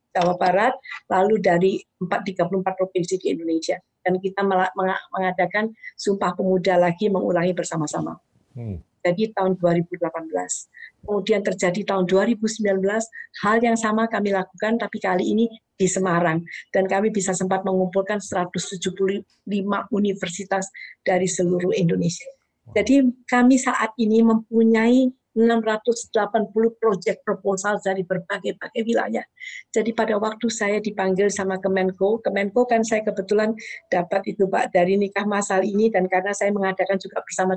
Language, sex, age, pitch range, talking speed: Indonesian, female, 50-69, 185-220 Hz, 125 wpm